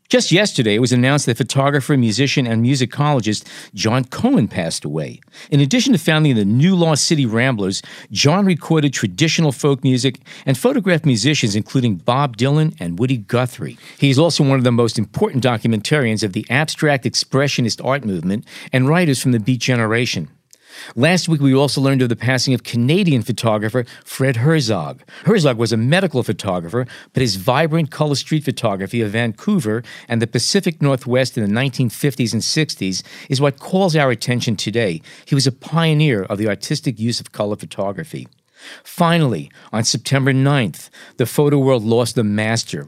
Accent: American